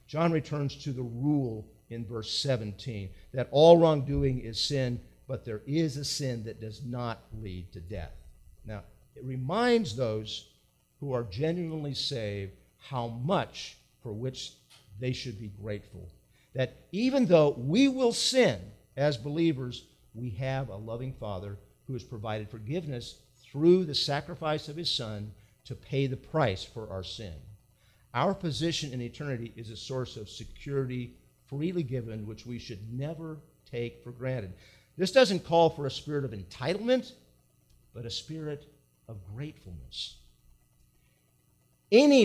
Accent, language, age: American, English, 50-69